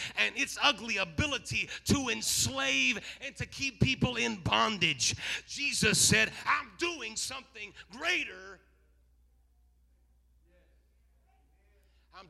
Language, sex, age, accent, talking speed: English, male, 40-59, American, 95 wpm